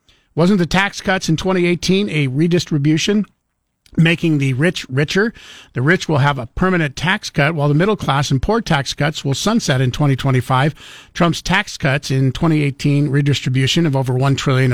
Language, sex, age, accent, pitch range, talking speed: English, male, 50-69, American, 140-175 Hz, 170 wpm